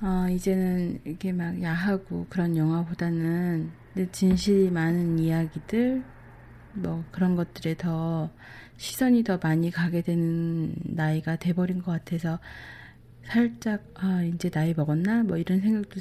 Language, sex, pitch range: Korean, female, 165-200 Hz